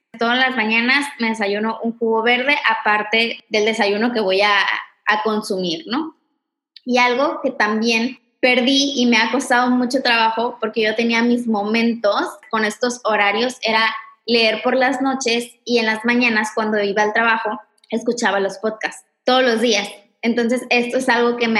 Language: Spanish